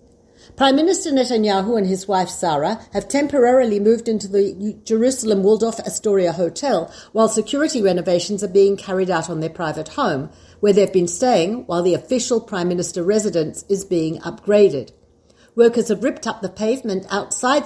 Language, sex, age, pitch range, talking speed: Hebrew, female, 60-79, 185-230 Hz, 160 wpm